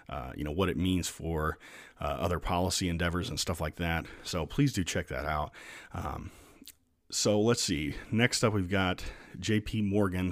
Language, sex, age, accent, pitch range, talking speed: English, male, 40-59, American, 75-95 Hz, 180 wpm